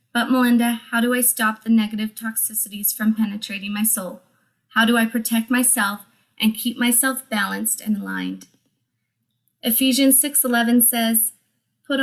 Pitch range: 215-245 Hz